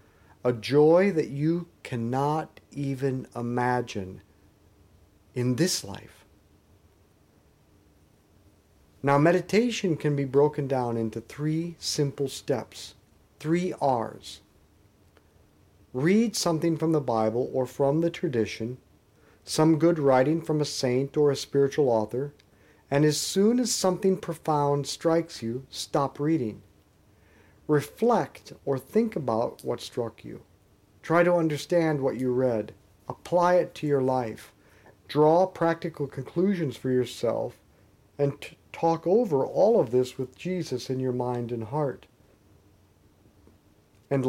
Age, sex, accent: 50-69, male, American